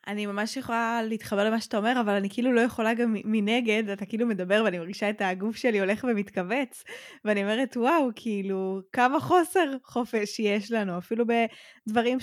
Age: 20-39